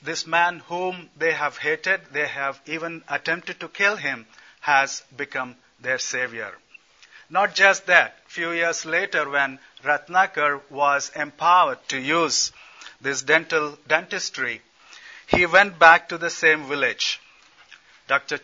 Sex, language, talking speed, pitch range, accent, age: male, English, 130 wpm, 140-170 Hz, Indian, 50-69